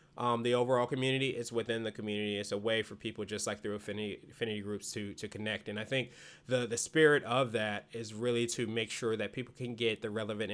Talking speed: 235 wpm